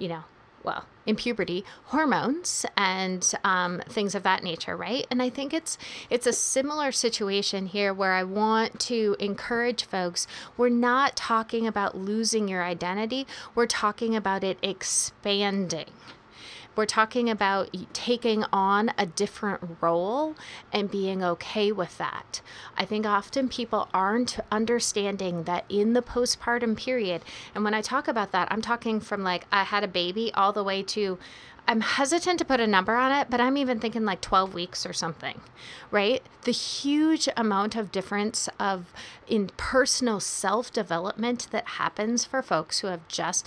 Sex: female